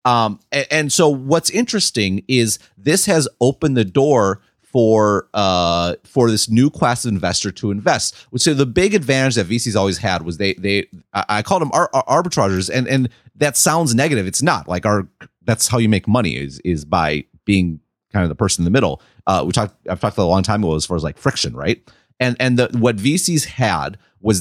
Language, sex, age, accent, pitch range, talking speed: English, male, 30-49, American, 100-125 Hz, 215 wpm